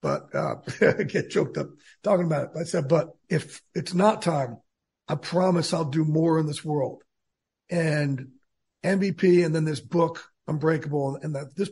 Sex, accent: male, American